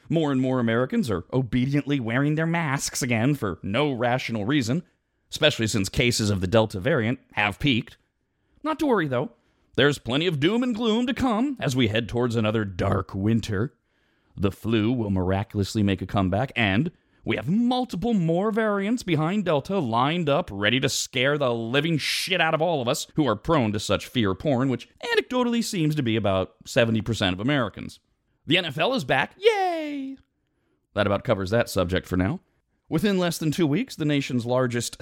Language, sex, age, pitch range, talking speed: English, male, 30-49, 110-160 Hz, 180 wpm